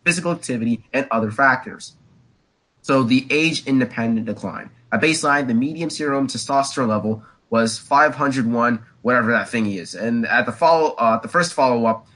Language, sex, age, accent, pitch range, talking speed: English, male, 20-39, American, 120-155 Hz, 150 wpm